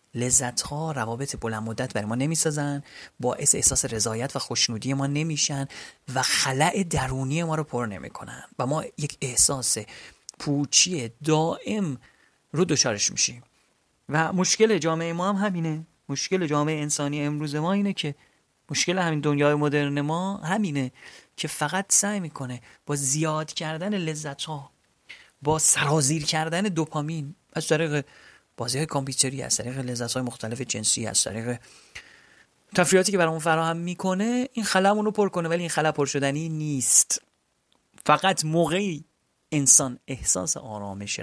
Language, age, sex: Persian, 30-49, male